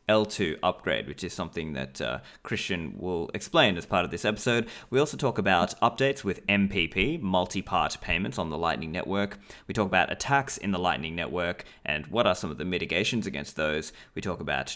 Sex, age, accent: male, 20-39, Australian